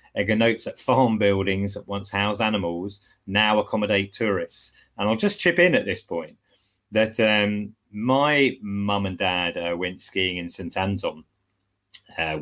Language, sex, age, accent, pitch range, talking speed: English, male, 30-49, British, 95-110 Hz, 155 wpm